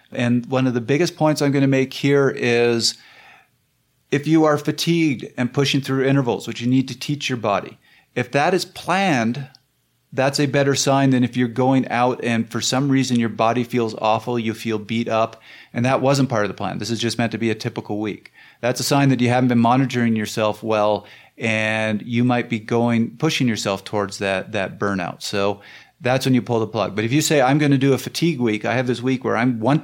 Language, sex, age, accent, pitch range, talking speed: English, male, 40-59, American, 115-135 Hz, 230 wpm